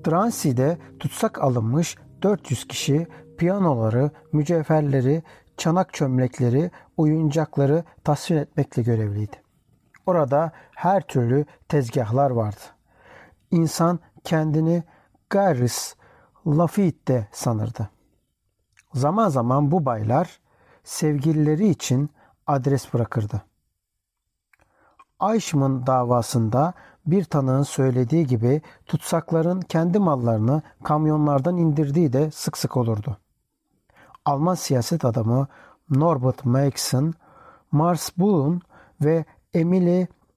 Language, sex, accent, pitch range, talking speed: Turkish, male, native, 130-165 Hz, 80 wpm